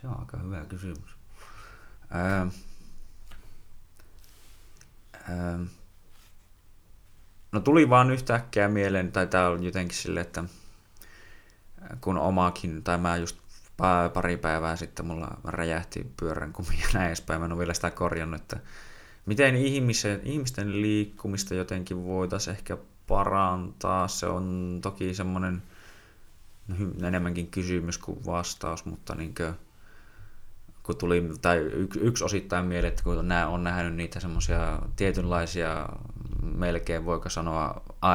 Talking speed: 115 wpm